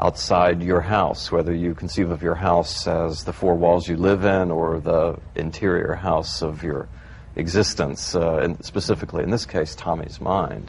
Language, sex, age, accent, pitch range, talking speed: English, male, 50-69, American, 85-95 Hz, 175 wpm